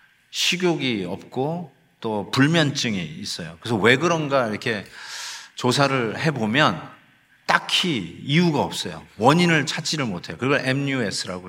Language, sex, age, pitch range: Korean, male, 50-69, 115-155 Hz